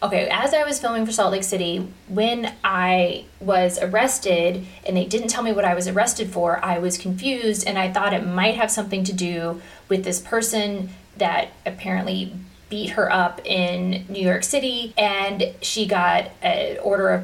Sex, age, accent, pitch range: female, 20-39, American, 185-210 Hz